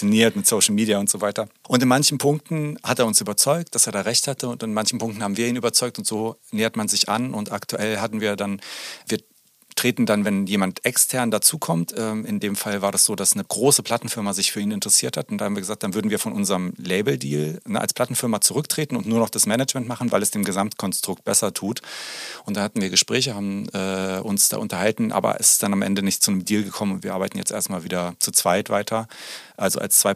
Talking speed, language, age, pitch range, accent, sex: 240 wpm, German, 40-59, 100-120 Hz, German, male